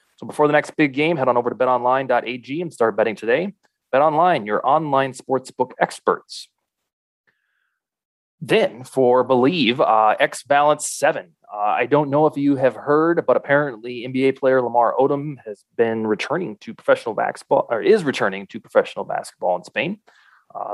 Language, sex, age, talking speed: English, male, 20-39, 160 wpm